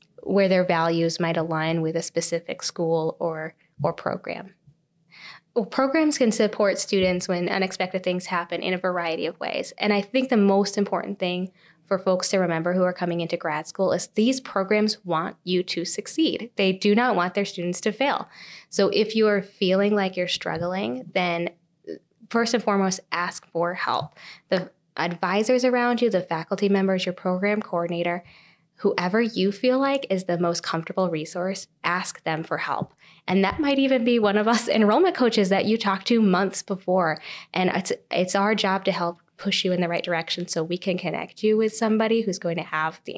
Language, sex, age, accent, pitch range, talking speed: English, female, 20-39, American, 170-205 Hz, 190 wpm